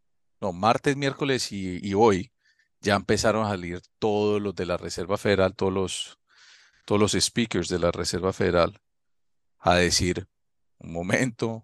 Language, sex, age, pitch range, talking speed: Spanish, male, 40-59, 95-120 Hz, 150 wpm